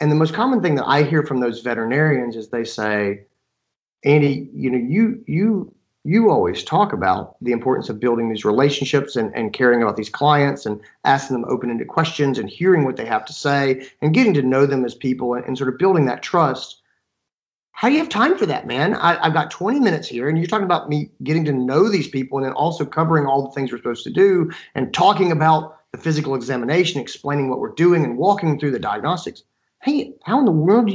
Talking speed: 225 wpm